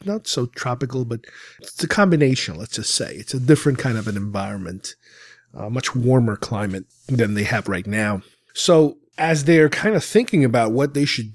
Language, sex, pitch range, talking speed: English, male, 120-145 Hz, 190 wpm